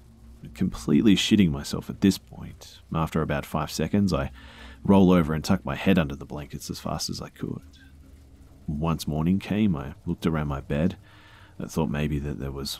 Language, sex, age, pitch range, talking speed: English, male, 30-49, 70-95 Hz, 185 wpm